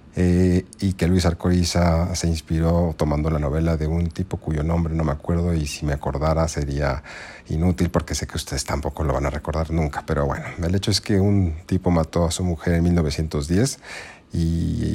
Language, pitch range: Spanish, 75-85 Hz